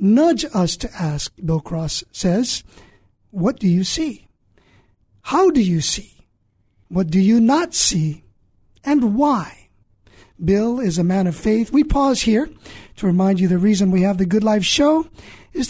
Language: English